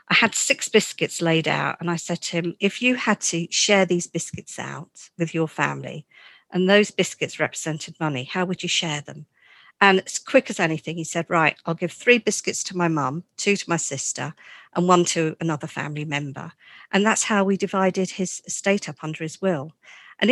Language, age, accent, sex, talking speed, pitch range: English, 50-69, British, female, 205 wpm, 160-185 Hz